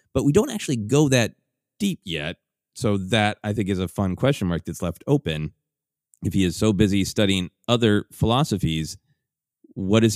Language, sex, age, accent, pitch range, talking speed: English, male, 30-49, American, 90-135 Hz, 175 wpm